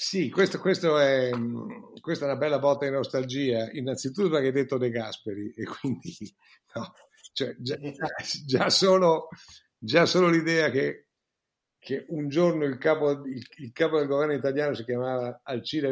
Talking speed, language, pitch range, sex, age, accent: 155 wpm, Italian, 125-155 Hz, male, 50-69, native